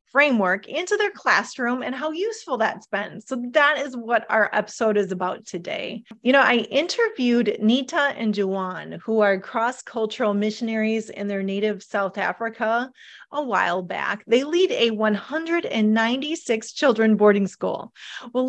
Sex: female